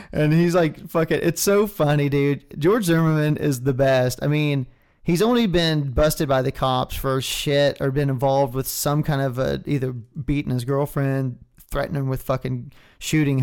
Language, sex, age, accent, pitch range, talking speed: English, male, 30-49, American, 125-145 Hz, 190 wpm